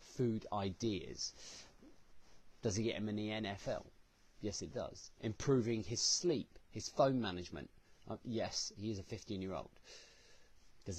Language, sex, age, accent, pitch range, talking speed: English, male, 30-49, British, 100-120 Hz, 145 wpm